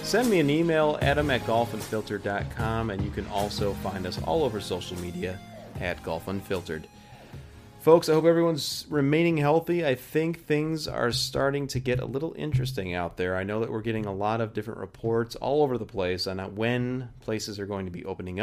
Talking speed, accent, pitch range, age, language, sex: 195 wpm, American, 95-125 Hz, 30-49, English, male